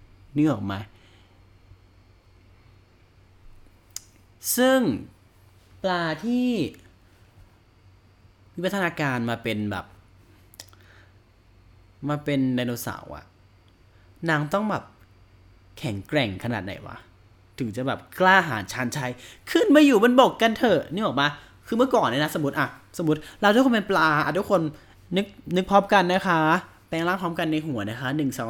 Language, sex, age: Thai, male, 20-39